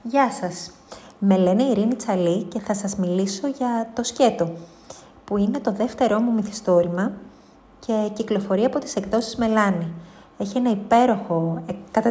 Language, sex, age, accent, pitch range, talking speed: Greek, female, 30-49, native, 195-255 Hz, 145 wpm